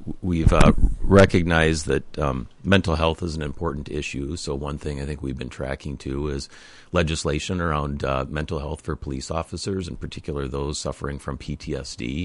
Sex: male